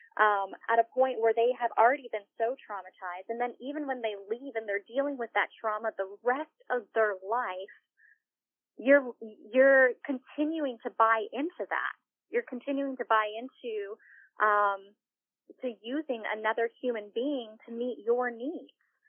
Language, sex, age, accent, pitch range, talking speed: English, female, 30-49, American, 220-280 Hz, 155 wpm